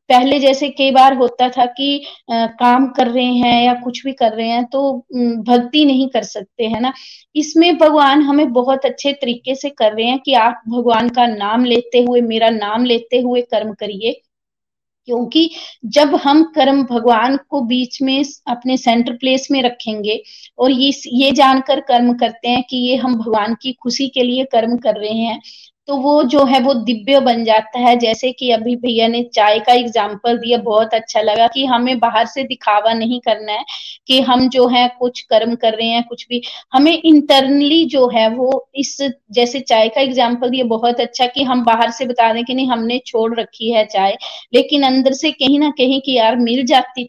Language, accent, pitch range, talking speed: Hindi, native, 230-270 Hz, 200 wpm